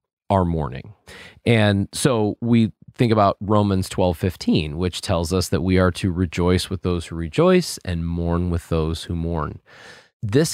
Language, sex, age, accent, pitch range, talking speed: English, male, 30-49, American, 95-130 Hz, 165 wpm